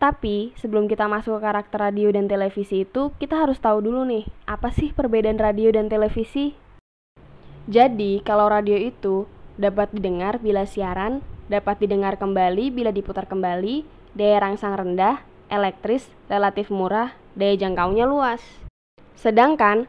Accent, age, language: native, 10-29, Indonesian